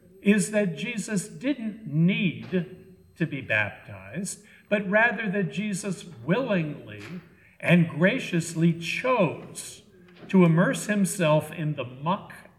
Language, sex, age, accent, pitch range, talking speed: English, male, 60-79, American, 150-195 Hz, 105 wpm